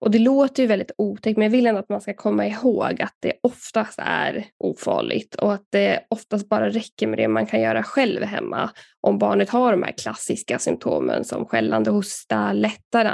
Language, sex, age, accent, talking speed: Swedish, female, 10-29, native, 200 wpm